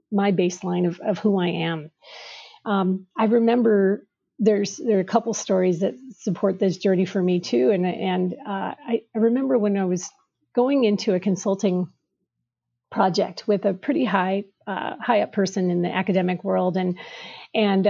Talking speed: 170 wpm